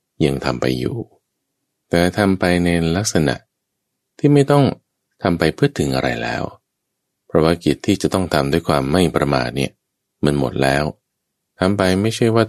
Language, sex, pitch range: Thai, male, 70-95 Hz